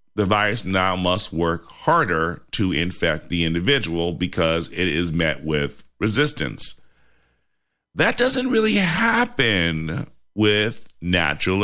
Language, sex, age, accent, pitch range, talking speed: English, male, 40-59, American, 90-125 Hz, 115 wpm